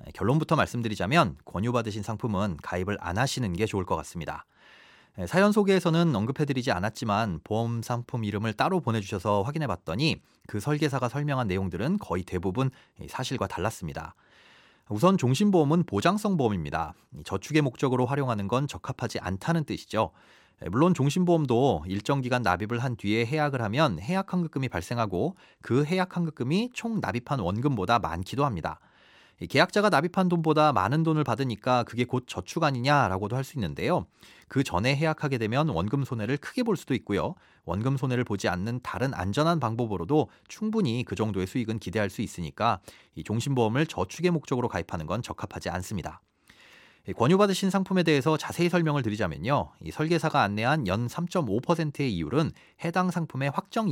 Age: 40-59